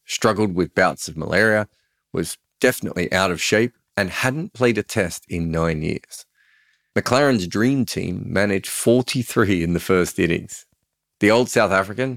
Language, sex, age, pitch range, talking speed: English, male, 40-59, 90-120 Hz, 155 wpm